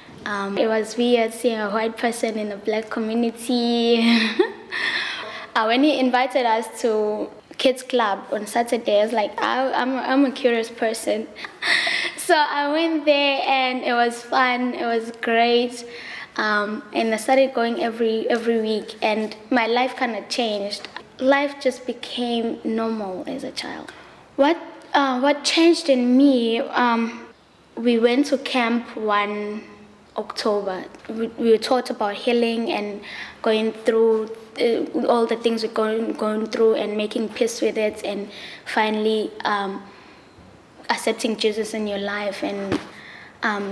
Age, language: 10-29, English